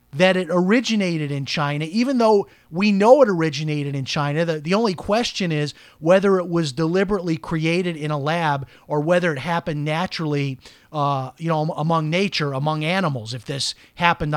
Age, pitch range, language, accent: 30-49, 145-185 Hz, English, American